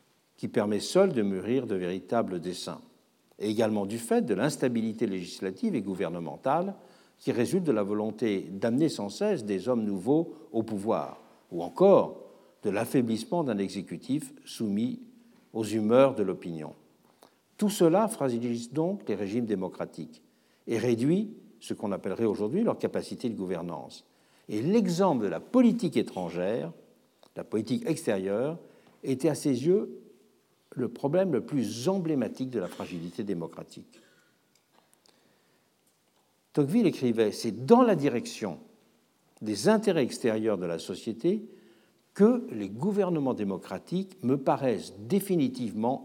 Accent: French